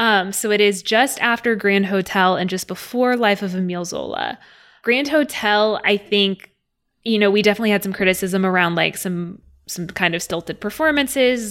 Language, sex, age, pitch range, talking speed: English, female, 20-39, 185-210 Hz, 175 wpm